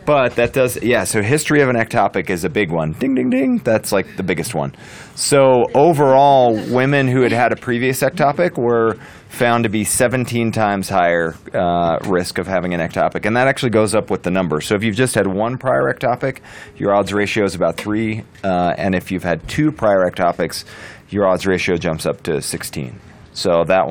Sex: male